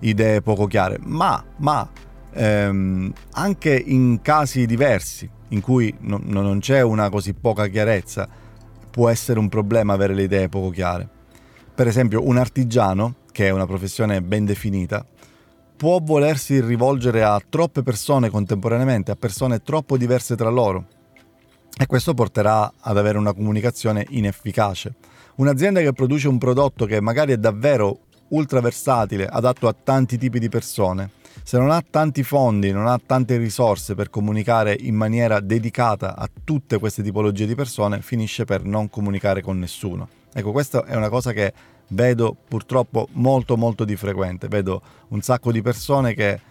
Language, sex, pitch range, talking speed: Italian, male, 100-125 Hz, 155 wpm